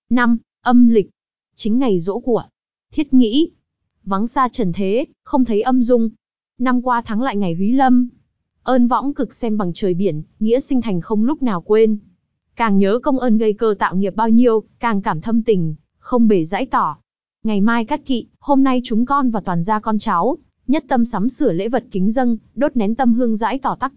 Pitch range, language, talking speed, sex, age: 200-250 Hz, Vietnamese, 210 wpm, female, 20-39